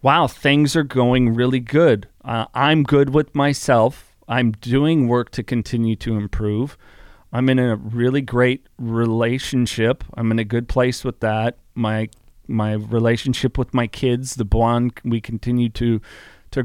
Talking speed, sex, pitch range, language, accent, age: 155 wpm, male, 115-135 Hz, English, American, 40-59